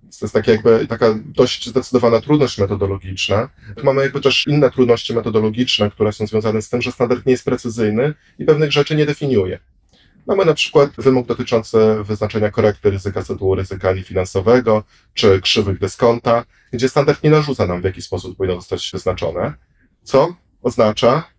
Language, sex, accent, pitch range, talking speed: Polish, male, native, 95-125 Hz, 150 wpm